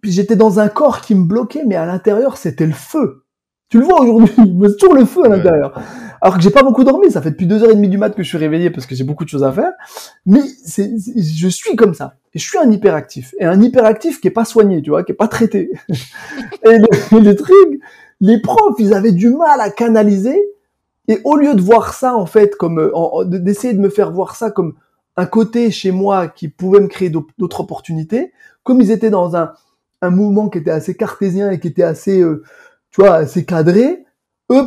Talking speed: 235 wpm